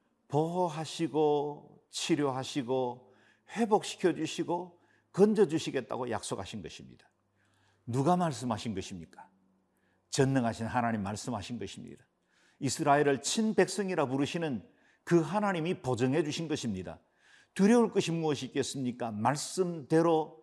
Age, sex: 50-69, male